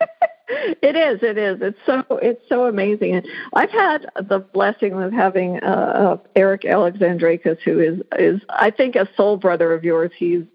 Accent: American